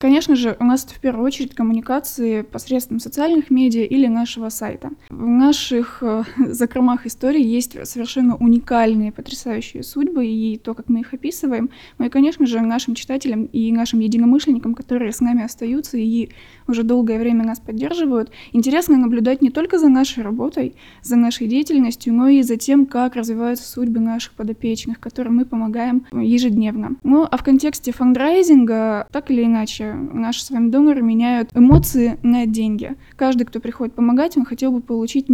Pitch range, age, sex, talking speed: 230-265 Hz, 20-39, female, 165 wpm